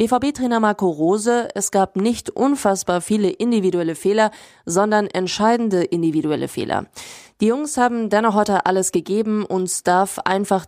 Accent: German